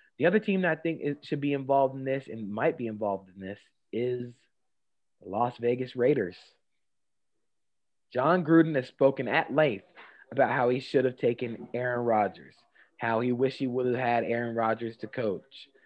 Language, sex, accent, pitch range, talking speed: English, male, American, 115-160 Hz, 180 wpm